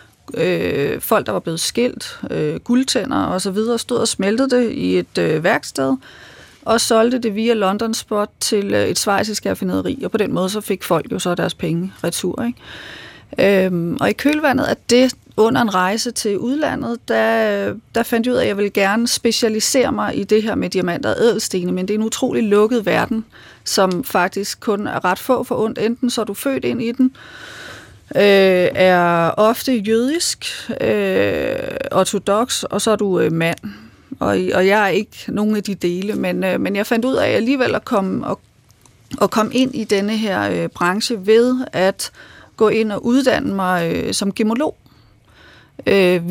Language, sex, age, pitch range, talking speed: Danish, female, 30-49, 190-240 Hz, 195 wpm